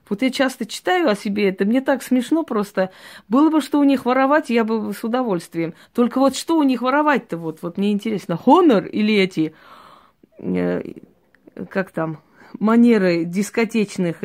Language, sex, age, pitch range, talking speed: Russian, female, 20-39, 185-245 Hz, 160 wpm